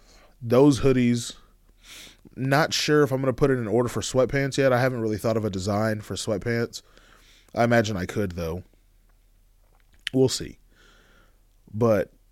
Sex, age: male, 20-39